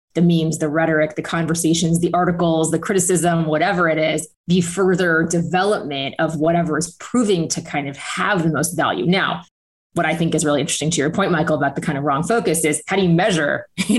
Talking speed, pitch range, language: 215 wpm, 155-175 Hz, English